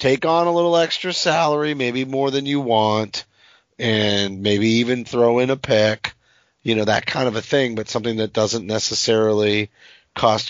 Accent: American